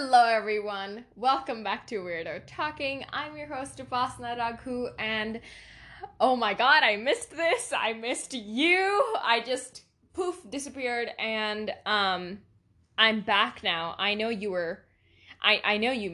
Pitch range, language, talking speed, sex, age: 190-255 Hz, English, 145 wpm, female, 10-29